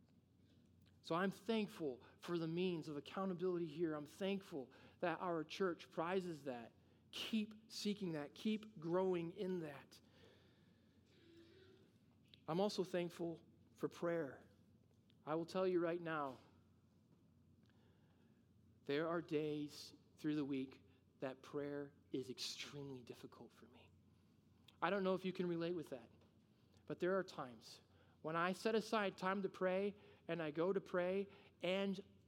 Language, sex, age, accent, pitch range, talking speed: English, male, 40-59, American, 145-220 Hz, 135 wpm